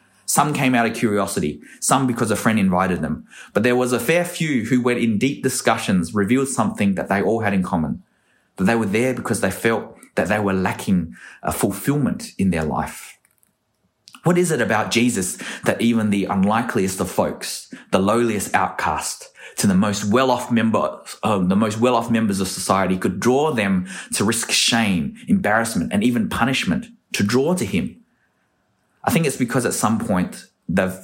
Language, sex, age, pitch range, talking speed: English, male, 20-39, 95-125 Hz, 180 wpm